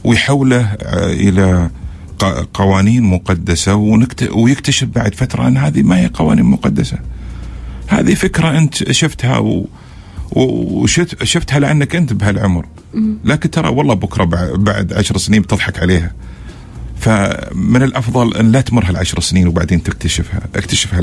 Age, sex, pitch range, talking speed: 50-69, male, 85-110 Hz, 115 wpm